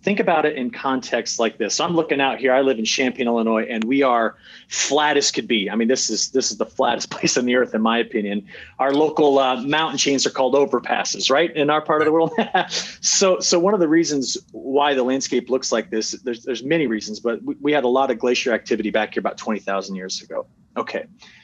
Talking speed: 240 wpm